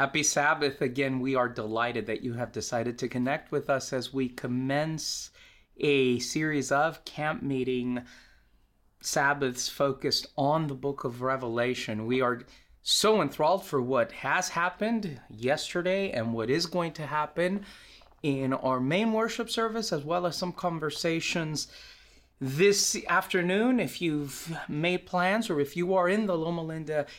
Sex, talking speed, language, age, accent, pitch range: male, 150 wpm, English, 30-49, American, 130-175 Hz